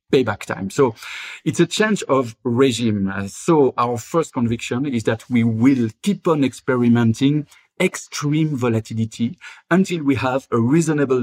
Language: English